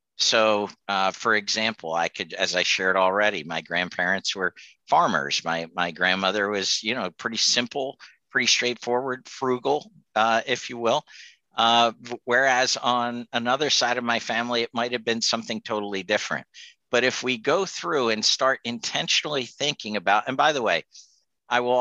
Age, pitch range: 50-69, 100-125 Hz